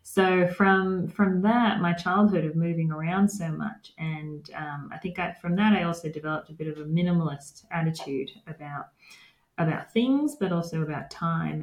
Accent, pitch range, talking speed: Australian, 155-190 Hz, 175 wpm